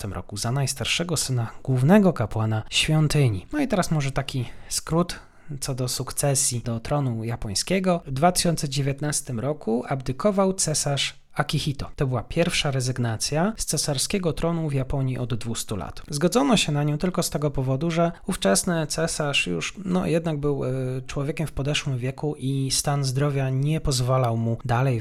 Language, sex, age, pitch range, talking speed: Polish, male, 30-49, 115-155 Hz, 150 wpm